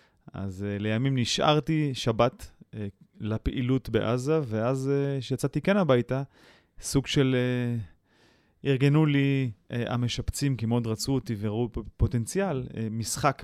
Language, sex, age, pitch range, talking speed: Hebrew, male, 30-49, 105-130 Hz, 100 wpm